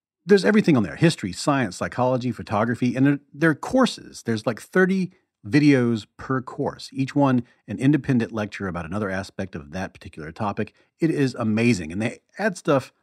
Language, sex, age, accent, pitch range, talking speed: English, male, 40-59, American, 105-145 Hz, 175 wpm